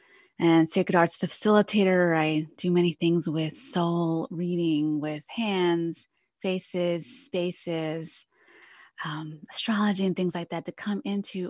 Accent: American